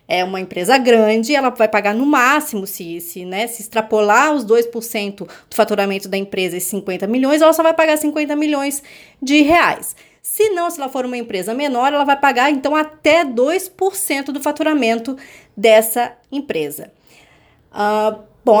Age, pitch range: 20-39, 200-280 Hz